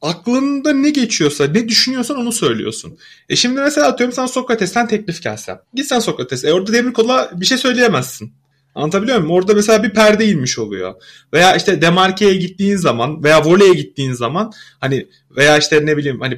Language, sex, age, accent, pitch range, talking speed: Turkish, male, 30-49, native, 165-270 Hz, 170 wpm